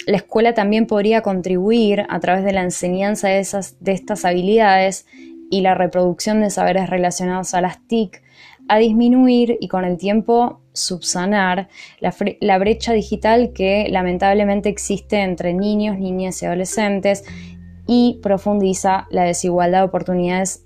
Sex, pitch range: female, 180-210 Hz